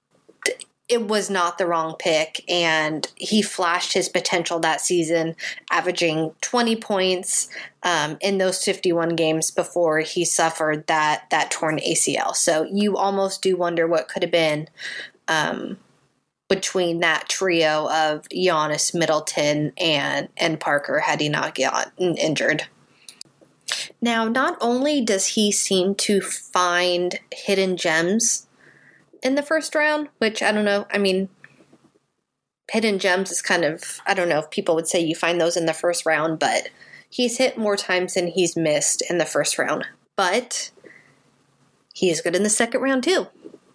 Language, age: English, 20-39